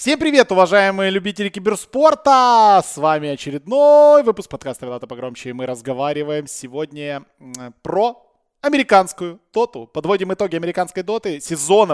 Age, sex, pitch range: 20-39, male, 140-195 Hz